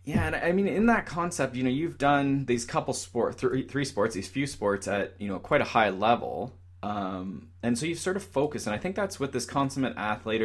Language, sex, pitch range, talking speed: English, male, 90-120 Hz, 240 wpm